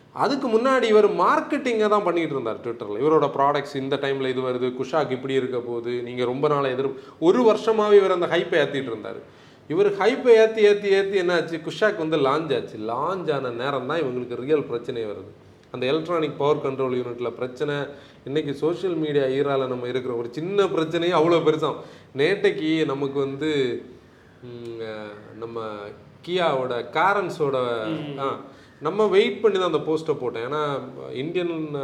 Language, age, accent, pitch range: Tamil, 30-49, native, 135-200 Hz